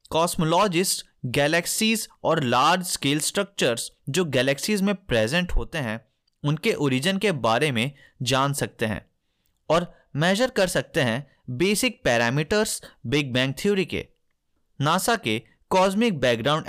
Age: 30-49